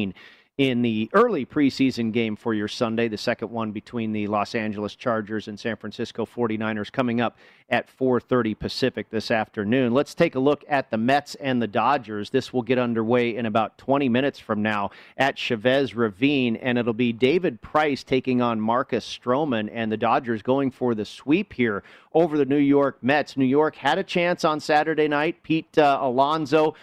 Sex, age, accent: male, 40-59, American